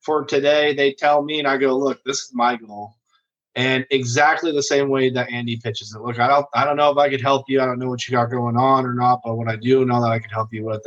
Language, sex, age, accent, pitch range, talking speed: English, male, 20-39, American, 115-140 Hz, 300 wpm